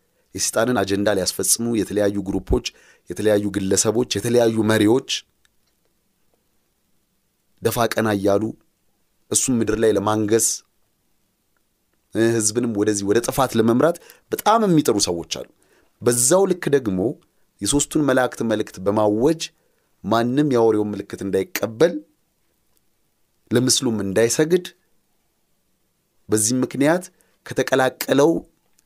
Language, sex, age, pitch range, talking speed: Amharic, male, 30-49, 105-130 Hz, 55 wpm